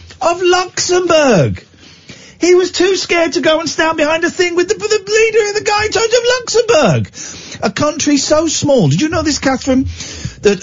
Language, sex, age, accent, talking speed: English, male, 40-59, British, 200 wpm